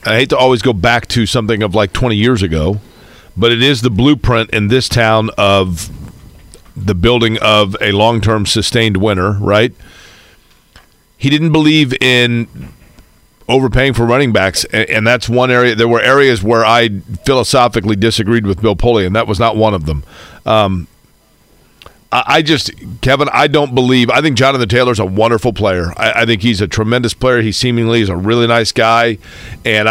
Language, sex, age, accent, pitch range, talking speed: English, male, 40-59, American, 110-125 Hz, 180 wpm